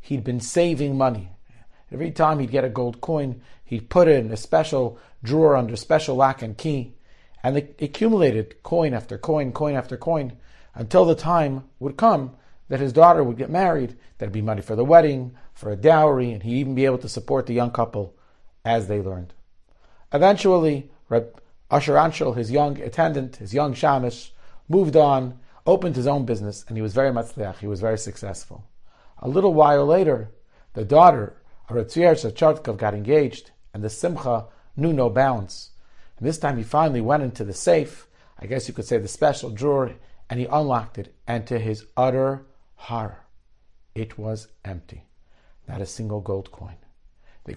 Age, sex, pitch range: 40-59, male, 110-145 Hz